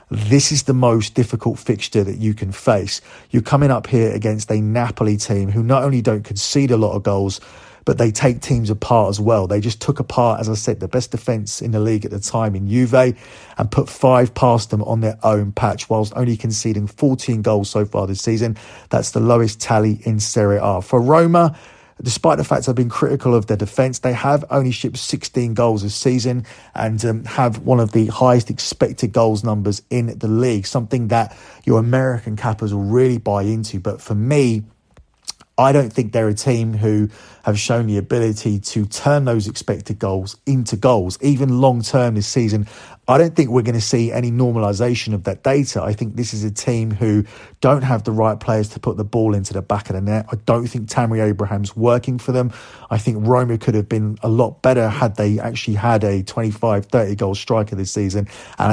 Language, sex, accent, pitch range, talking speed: English, male, British, 105-125 Hz, 210 wpm